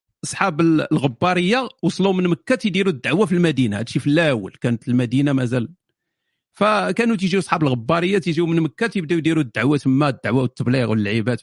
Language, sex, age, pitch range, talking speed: Arabic, male, 50-69, 140-190 Hz, 150 wpm